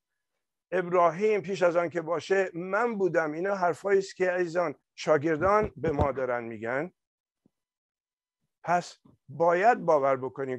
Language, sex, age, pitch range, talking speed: Persian, male, 50-69, 135-180 Hz, 125 wpm